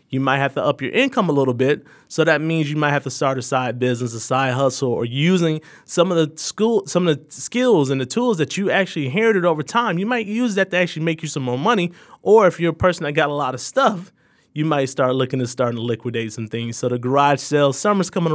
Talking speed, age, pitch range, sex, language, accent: 265 wpm, 30-49, 135-190 Hz, male, English, American